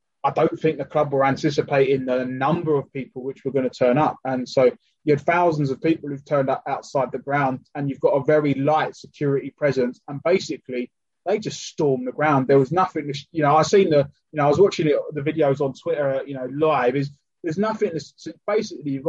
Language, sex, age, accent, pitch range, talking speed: English, male, 20-39, British, 145-205 Hz, 220 wpm